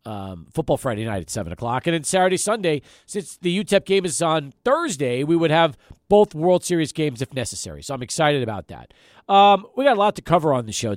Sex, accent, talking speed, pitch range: male, American, 230 wpm, 145-195 Hz